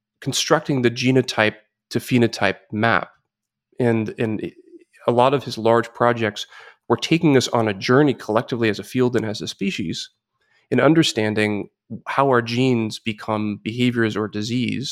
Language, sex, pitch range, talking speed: English, male, 110-130 Hz, 150 wpm